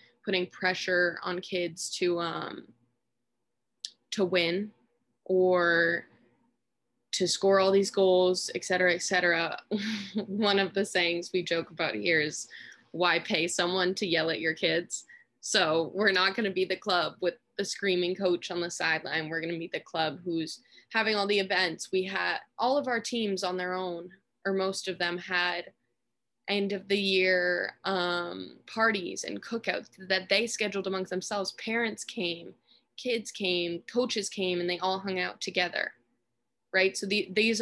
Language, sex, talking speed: English, female, 160 wpm